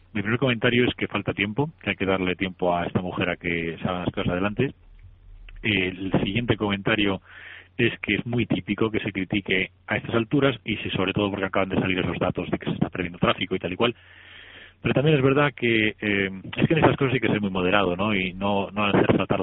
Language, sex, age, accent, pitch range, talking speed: Spanish, male, 30-49, Spanish, 90-110 Hz, 240 wpm